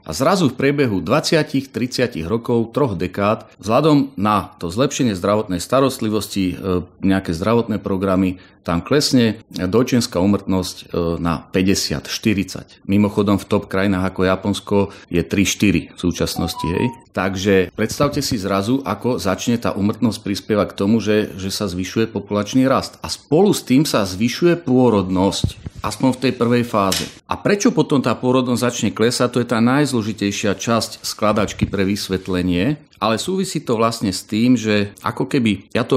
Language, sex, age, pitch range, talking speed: Slovak, male, 40-59, 95-120 Hz, 150 wpm